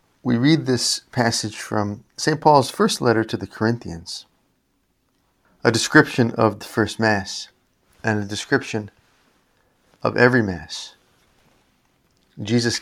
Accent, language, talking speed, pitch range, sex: American, English, 115 wpm, 105-125 Hz, male